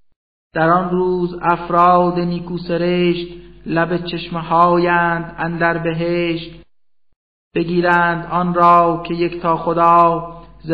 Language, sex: Persian, male